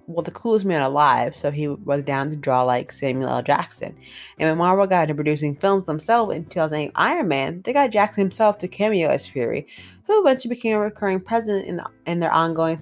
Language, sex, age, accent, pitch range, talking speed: English, female, 20-39, American, 145-210 Hz, 215 wpm